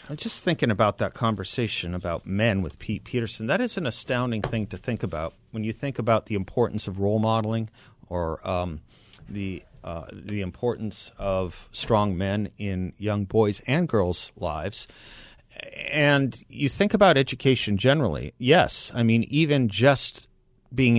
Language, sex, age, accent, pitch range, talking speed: English, male, 40-59, American, 95-120 Hz, 155 wpm